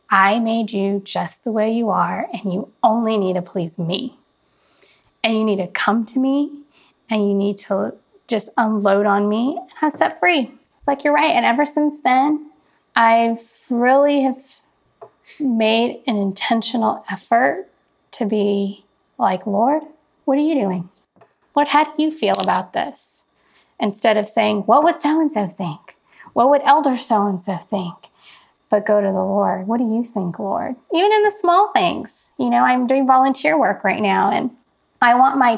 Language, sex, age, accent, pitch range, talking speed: English, female, 20-39, American, 205-270 Hz, 175 wpm